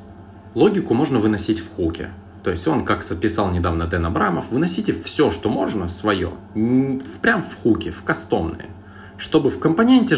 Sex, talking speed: male, 155 wpm